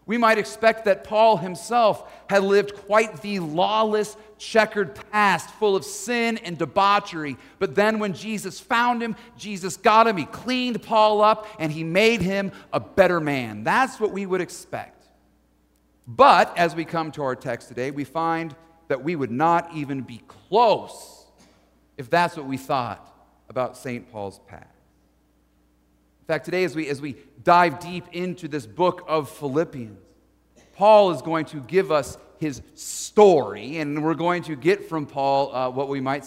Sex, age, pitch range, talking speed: male, 40-59, 145-205 Hz, 170 wpm